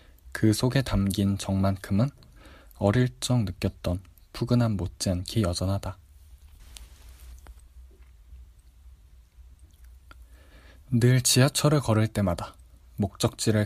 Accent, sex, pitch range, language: native, male, 85-115 Hz, Korean